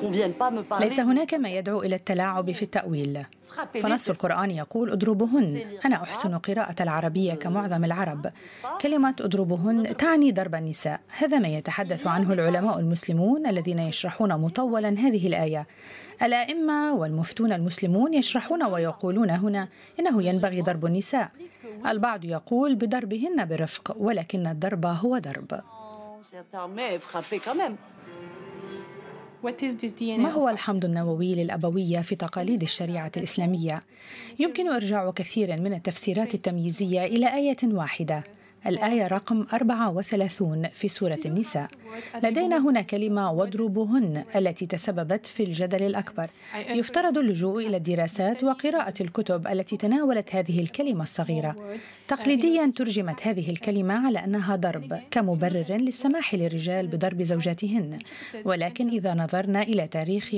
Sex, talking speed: female, 115 wpm